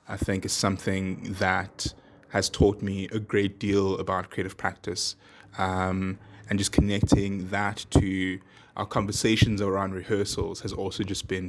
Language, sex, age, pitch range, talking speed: English, male, 20-39, 95-105 Hz, 145 wpm